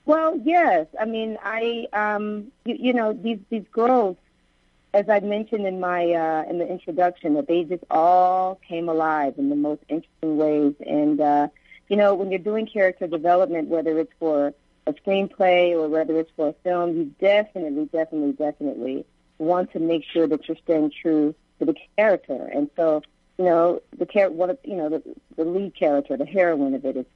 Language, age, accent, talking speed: English, 50-69, American, 190 wpm